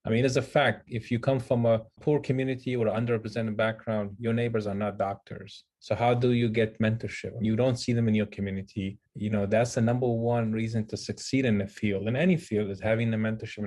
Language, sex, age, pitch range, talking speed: English, male, 30-49, 105-120 Hz, 230 wpm